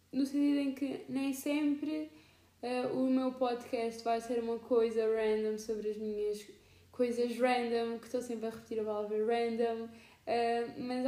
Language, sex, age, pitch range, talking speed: Portuguese, female, 10-29, 235-270 Hz, 160 wpm